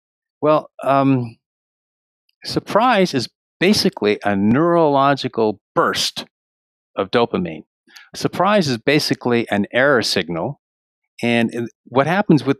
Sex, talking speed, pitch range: male, 95 wpm, 105-135 Hz